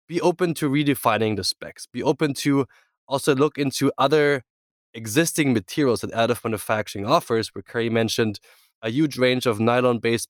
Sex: male